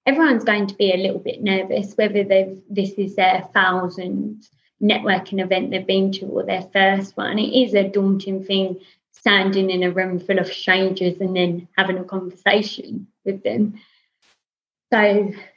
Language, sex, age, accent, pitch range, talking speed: English, female, 20-39, British, 180-200 Hz, 165 wpm